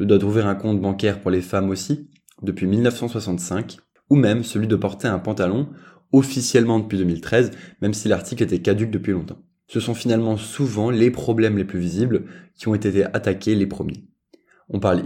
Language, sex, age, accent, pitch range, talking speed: French, male, 20-39, French, 95-120 Hz, 180 wpm